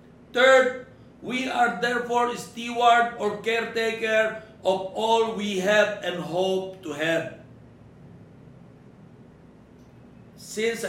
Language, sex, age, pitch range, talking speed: Filipino, male, 60-79, 180-235 Hz, 95 wpm